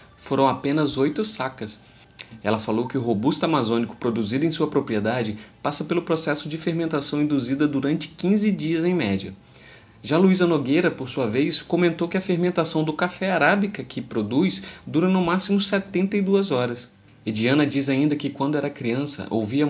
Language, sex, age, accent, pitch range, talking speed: Portuguese, male, 30-49, Brazilian, 120-170 Hz, 165 wpm